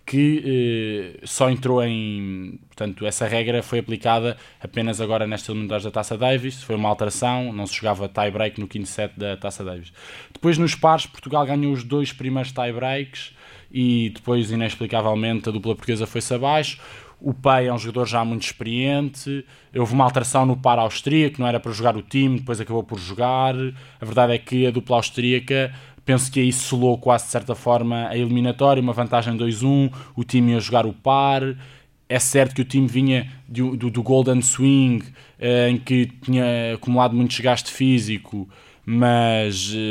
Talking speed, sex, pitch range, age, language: 175 wpm, male, 110-130 Hz, 20-39, Portuguese